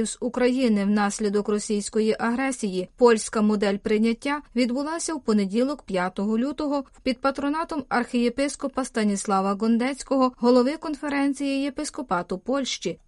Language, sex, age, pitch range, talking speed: Ukrainian, female, 20-39, 220-275 Hz, 100 wpm